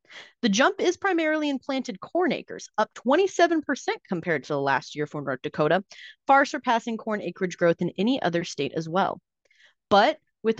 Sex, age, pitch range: female, 30-49, 170-250 Hz